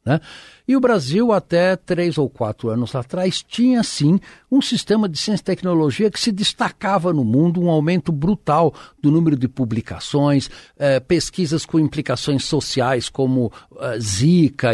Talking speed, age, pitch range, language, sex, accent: 155 wpm, 60-79, 140-205 Hz, Portuguese, male, Brazilian